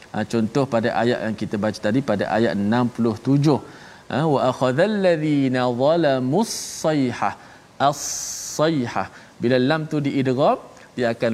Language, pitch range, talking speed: Malayalam, 115-140 Hz, 120 wpm